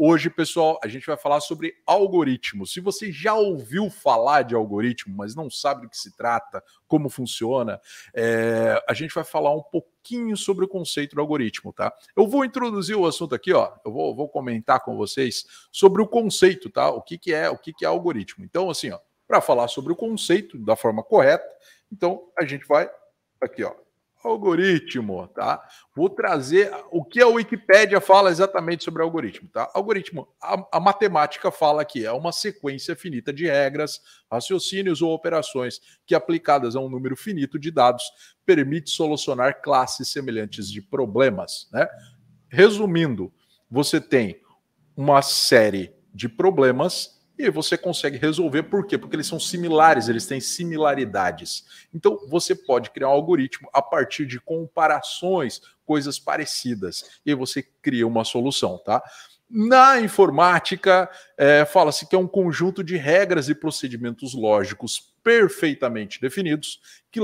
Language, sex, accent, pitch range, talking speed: Portuguese, male, Brazilian, 135-190 Hz, 155 wpm